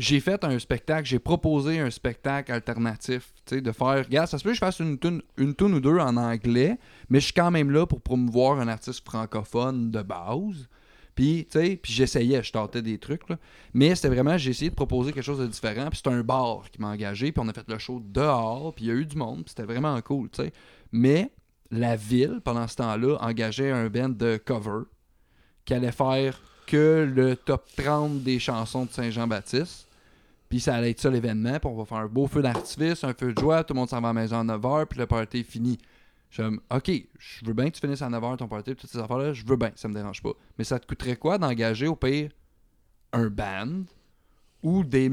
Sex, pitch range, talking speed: male, 115-145 Hz, 235 wpm